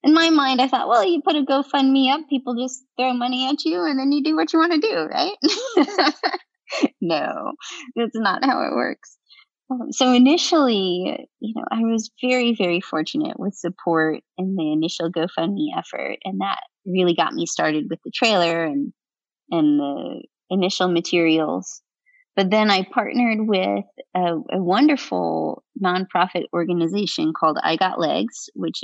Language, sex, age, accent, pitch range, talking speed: English, female, 20-39, American, 175-280 Hz, 165 wpm